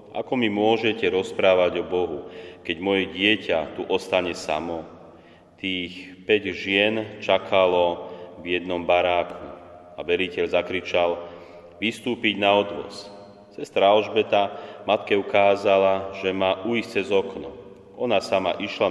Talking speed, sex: 115 wpm, male